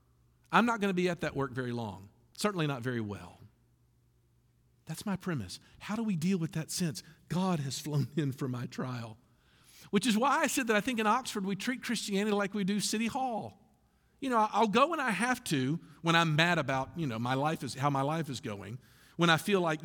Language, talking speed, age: English, 225 wpm, 50-69